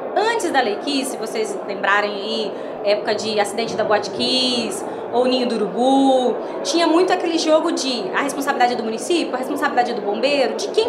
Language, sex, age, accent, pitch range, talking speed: Portuguese, female, 20-39, Brazilian, 255-345 Hz, 195 wpm